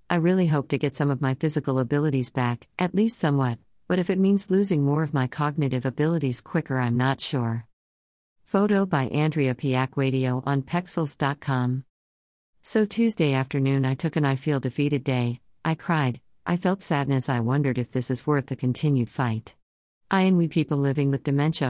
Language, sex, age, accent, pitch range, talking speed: English, female, 50-69, American, 130-165 Hz, 185 wpm